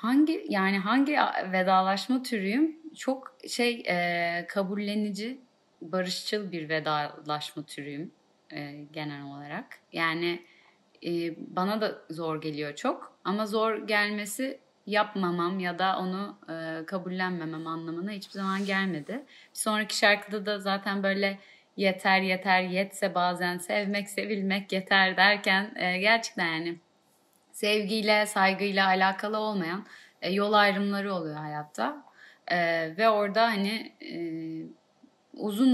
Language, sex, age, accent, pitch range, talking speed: Turkish, female, 30-49, native, 170-215 Hz, 110 wpm